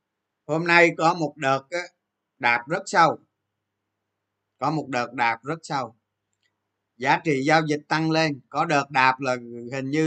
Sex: male